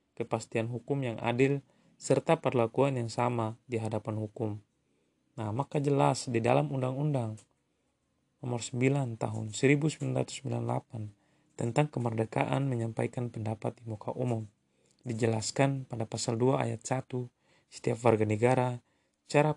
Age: 20-39